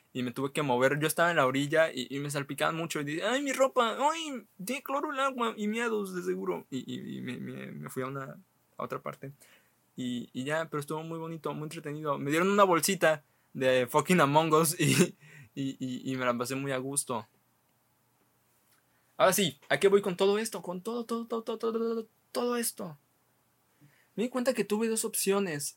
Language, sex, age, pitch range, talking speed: Spanish, male, 20-39, 140-215 Hz, 210 wpm